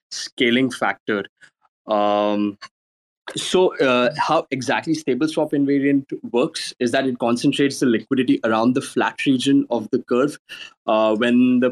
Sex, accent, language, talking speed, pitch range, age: male, Indian, English, 140 wpm, 110-130 Hz, 20-39